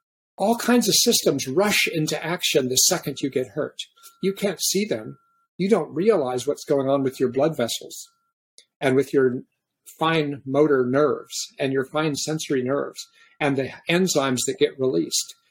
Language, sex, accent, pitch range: English, male, American, 145-200 Hz